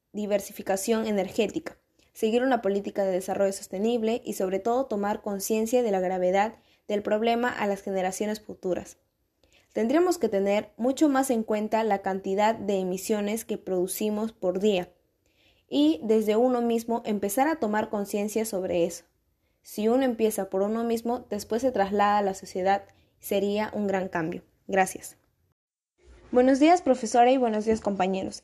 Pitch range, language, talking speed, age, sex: 200-245 Hz, Spanish, 150 wpm, 10-29, female